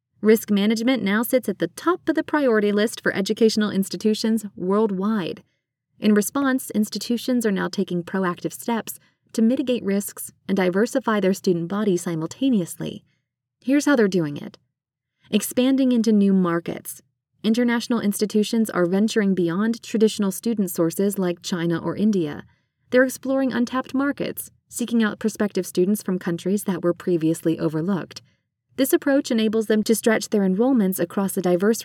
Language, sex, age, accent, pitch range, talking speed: English, female, 20-39, American, 180-230 Hz, 145 wpm